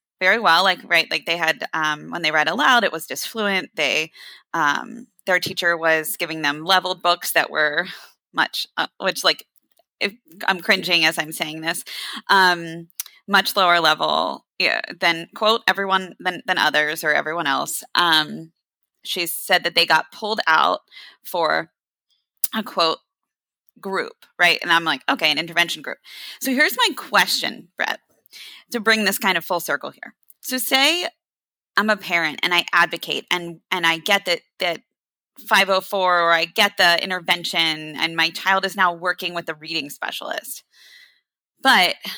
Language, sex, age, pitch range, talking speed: English, female, 20-39, 165-200 Hz, 165 wpm